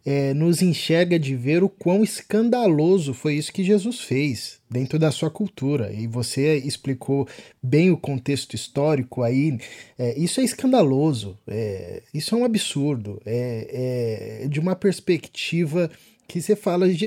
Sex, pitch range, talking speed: male, 135-200 Hz, 130 wpm